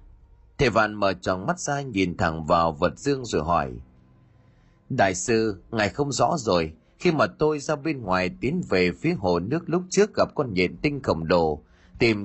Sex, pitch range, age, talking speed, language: male, 90-150 Hz, 30-49, 190 wpm, Vietnamese